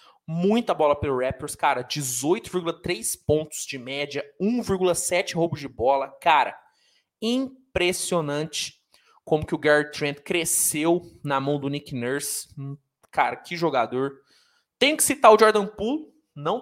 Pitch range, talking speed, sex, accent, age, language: 140-180 Hz, 135 wpm, male, Brazilian, 20-39, Portuguese